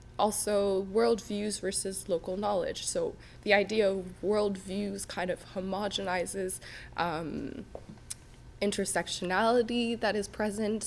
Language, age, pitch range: English, 20-39, 175-205 Hz